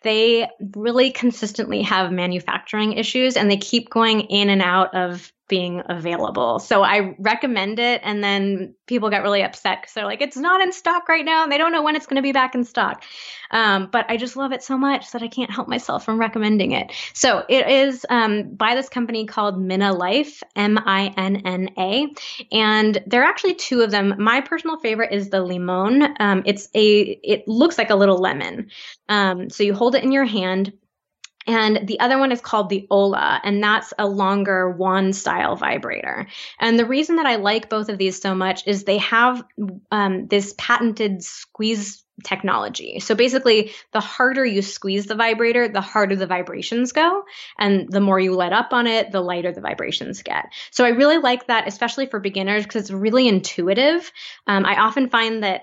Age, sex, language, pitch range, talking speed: 20-39, female, English, 195-245 Hz, 200 wpm